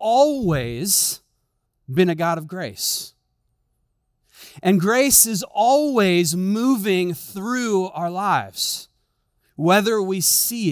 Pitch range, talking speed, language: 125-185 Hz, 95 wpm, English